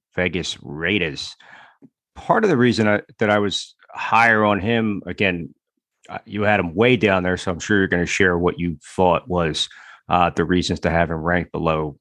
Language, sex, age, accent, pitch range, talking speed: English, male, 30-49, American, 90-110 Hz, 195 wpm